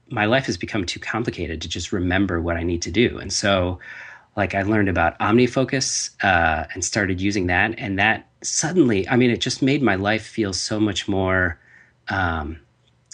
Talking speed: 185 wpm